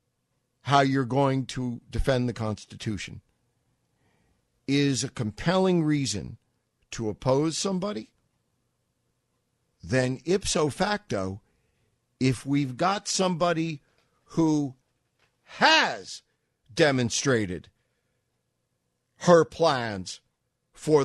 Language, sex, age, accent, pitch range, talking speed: English, male, 50-69, American, 120-170 Hz, 75 wpm